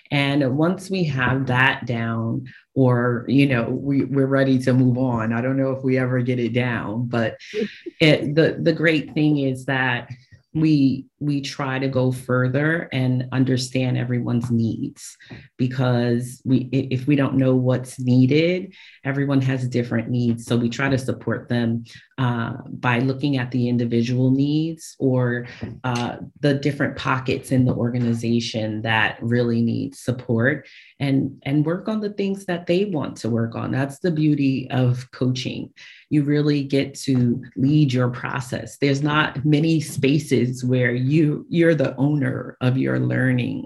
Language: English